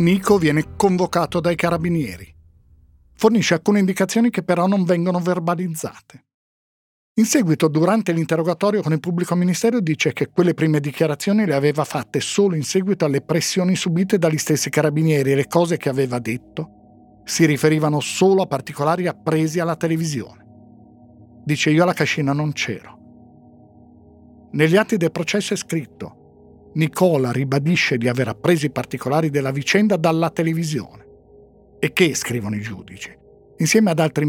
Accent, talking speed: native, 145 wpm